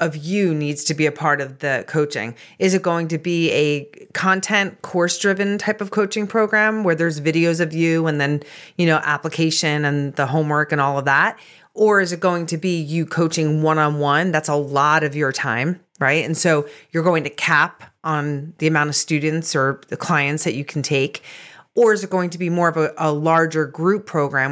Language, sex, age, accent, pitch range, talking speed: English, female, 30-49, American, 145-180 Hz, 215 wpm